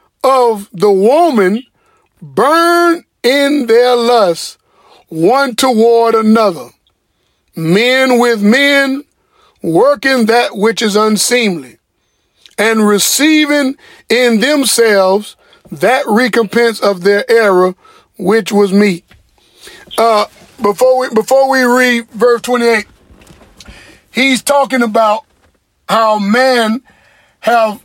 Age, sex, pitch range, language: 50-69, male, 210-255 Hz, English